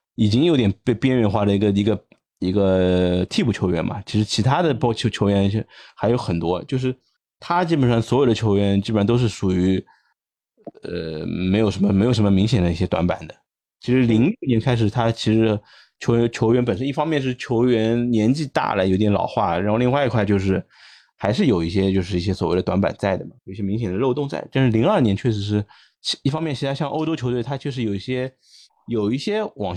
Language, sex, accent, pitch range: Chinese, male, native, 100-125 Hz